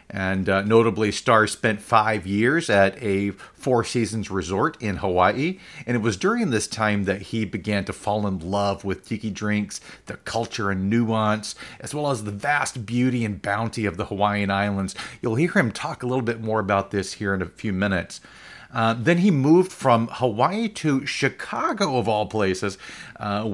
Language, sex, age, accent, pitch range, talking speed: English, male, 40-59, American, 100-120 Hz, 185 wpm